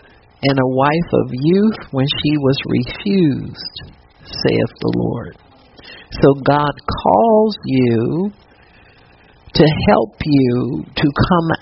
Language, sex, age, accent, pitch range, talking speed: English, male, 50-69, American, 125-165 Hz, 110 wpm